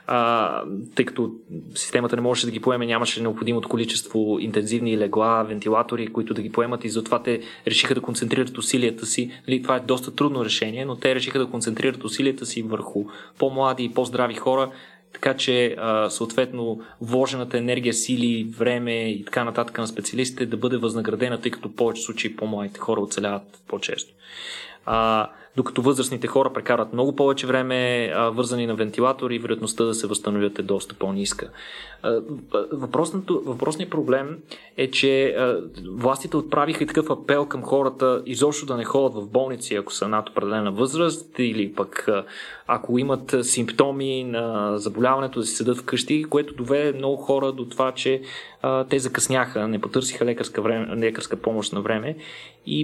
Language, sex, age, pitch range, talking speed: Bulgarian, male, 20-39, 115-130 Hz, 165 wpm